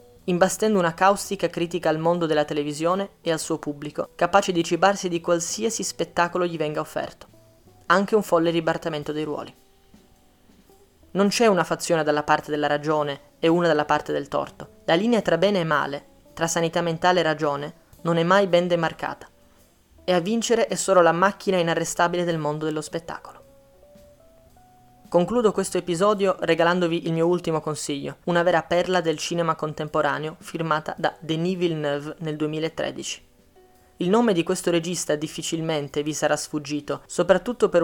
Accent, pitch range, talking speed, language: native, 155-185 Hz, 160 wpm, Italian